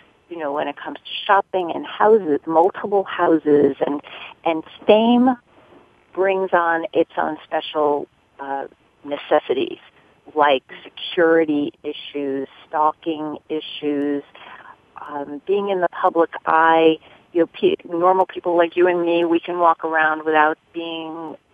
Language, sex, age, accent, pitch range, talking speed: English, female, 40-59, American, 145-170 Hz, 130 wpm